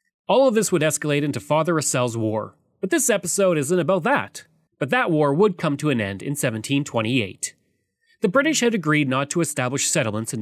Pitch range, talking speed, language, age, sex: 130-190 Hz, 195 wpm, English, 30-49, male